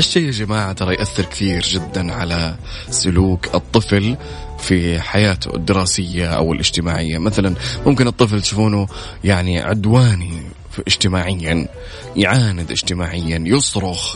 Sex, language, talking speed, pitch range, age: male, Arabic, 105 wpm, 90-105 Hz, 20-39